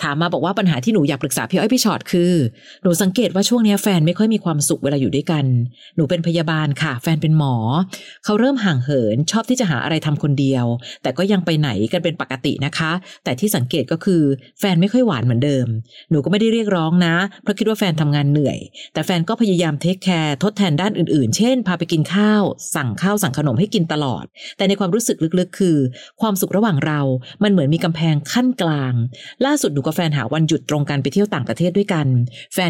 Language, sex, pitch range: Thai, female, 145-200 Hz